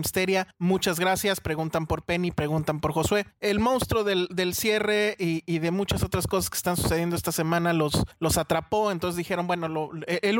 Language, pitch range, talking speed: Spanish, 160-195 Hz, 190 wpm